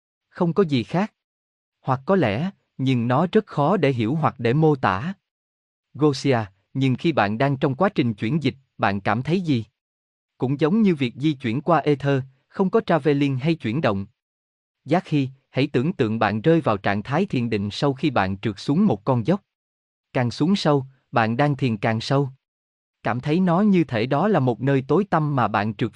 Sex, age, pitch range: male, 20-39, 110-155 Hz